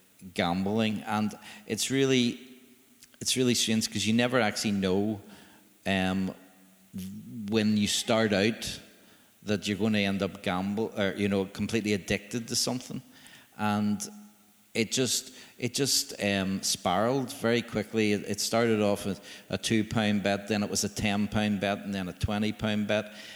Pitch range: 100-110 Hz